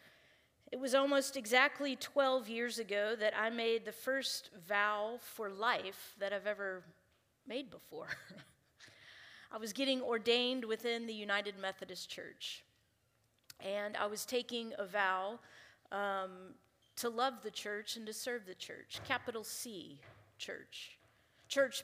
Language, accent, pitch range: English, American, 205-255 Hz